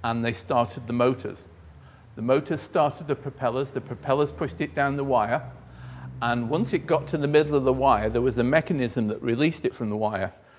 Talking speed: 210 wpm